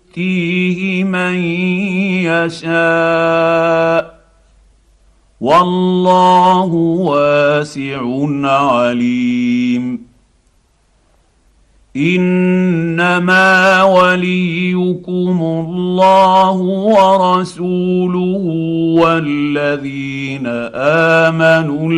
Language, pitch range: Arabic, 150-185 Hz